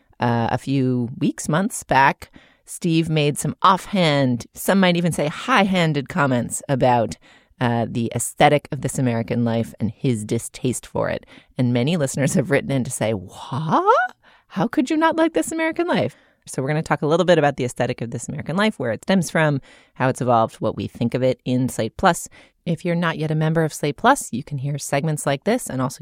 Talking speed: 215 wpm